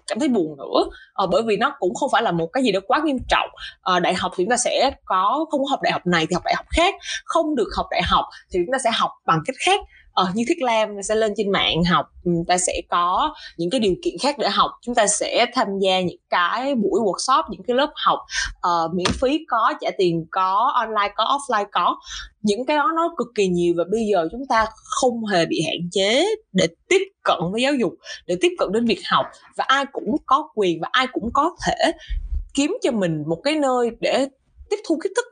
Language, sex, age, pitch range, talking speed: Vietnamese, female, 20-39, 175-265 Hz, 245 wpm